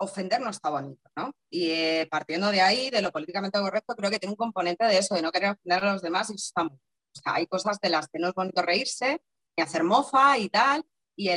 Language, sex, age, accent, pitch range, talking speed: Spanish, female, 20-39, Spanish, 185-270 Hz, 250 wpm